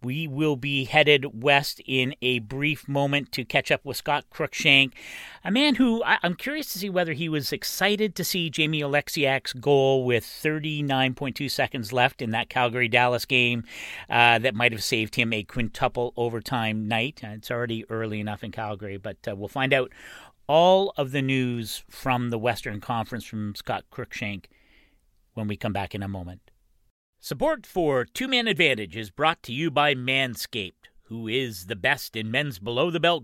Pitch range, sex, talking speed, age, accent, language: 115-155 Hz, male, 170 wpm, 40-59, American, English